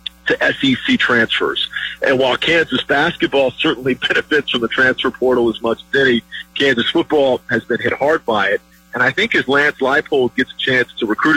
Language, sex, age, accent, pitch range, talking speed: English, male, 50-69, American, 120-150 Hz, 190 wpm